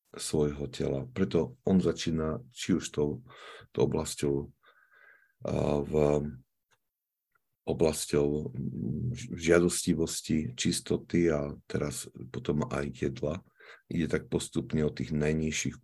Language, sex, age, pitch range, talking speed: Slovak, male, 50-69, 75-90 Hz, 85 wpm